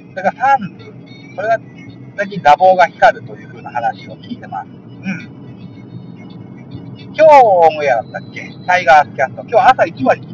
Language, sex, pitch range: Japanese, male, 145-220 Hz